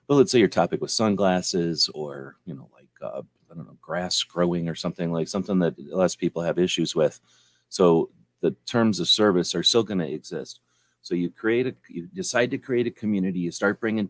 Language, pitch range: English, 85-105 Hz